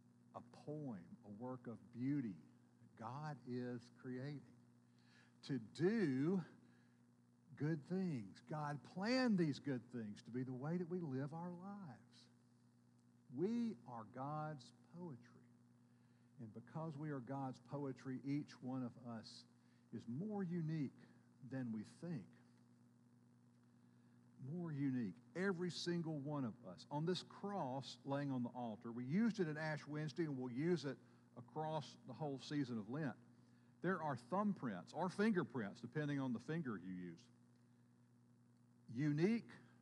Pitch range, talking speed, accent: 105-150 Hz, 135 wpm, American